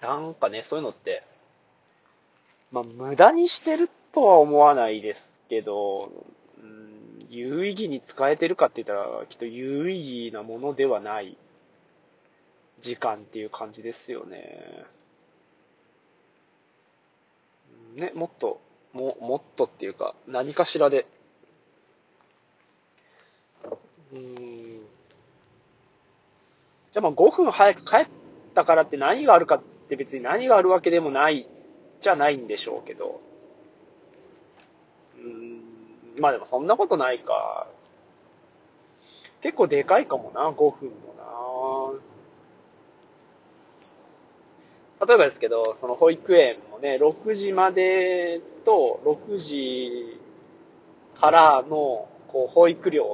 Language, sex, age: Japanese, male, 20-39